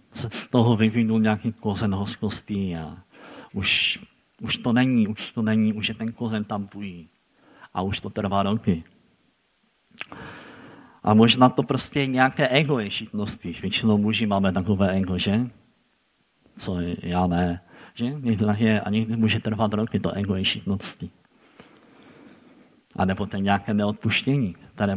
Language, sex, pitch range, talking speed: Czech, male, 100-115 Hz, 135 wpm